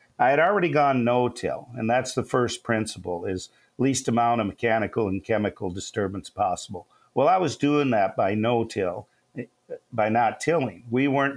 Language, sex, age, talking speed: English, male, 50-69, 165 wpm